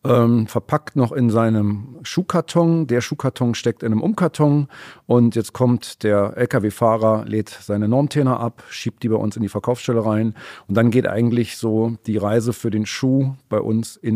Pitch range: 110-130 Hz